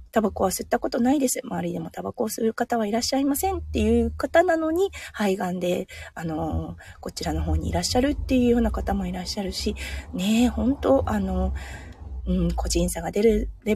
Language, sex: Japanese, female